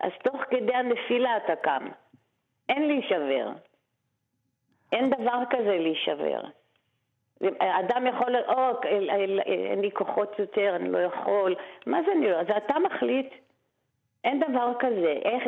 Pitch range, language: 175-220 Hz, Hebrew